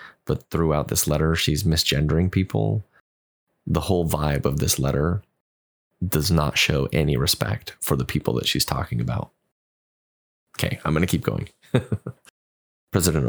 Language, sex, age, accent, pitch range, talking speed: English, male, 30-49, American, 75-95 Hz, 145 wpm